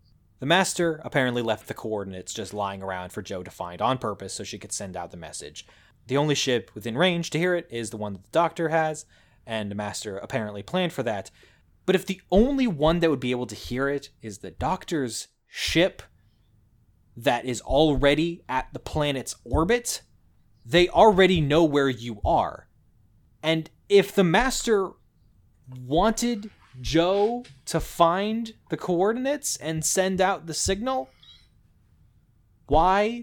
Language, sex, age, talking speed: English, male, 20-39, 160 wpm